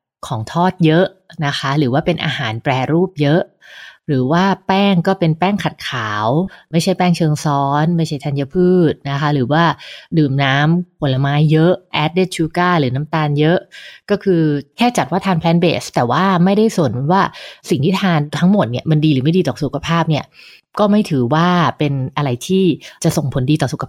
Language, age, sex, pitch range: English, 20-39, female, 145-190 Hz